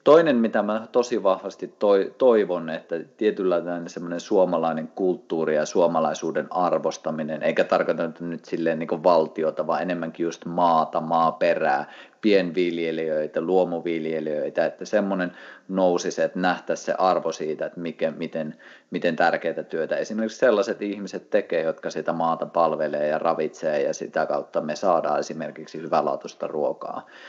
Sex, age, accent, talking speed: male, 30-49, native, 130 wpm